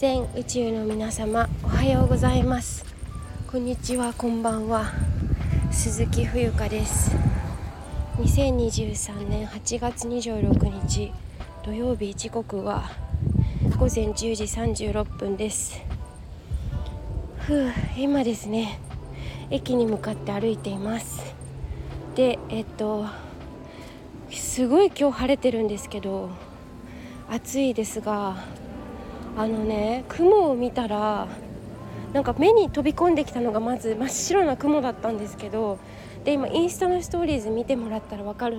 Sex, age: female, 20-39